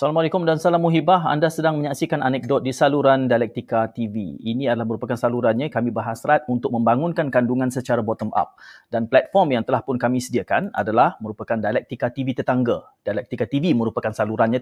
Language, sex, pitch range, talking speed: Malay, male, 120-160 Hz, 165 wpm